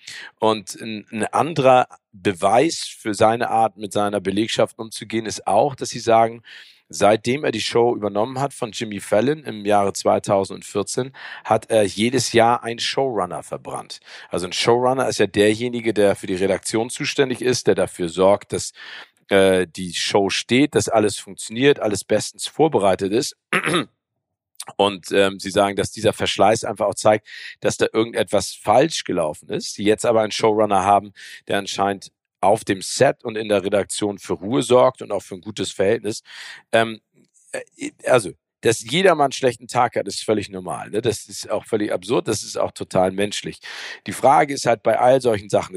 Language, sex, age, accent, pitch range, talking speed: German, male, 50-69, German, 100-120 Hz, 175 wpm